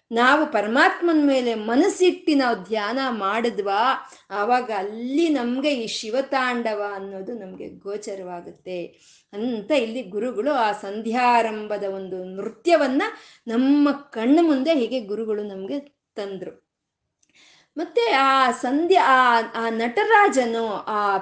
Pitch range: 215-295 Hz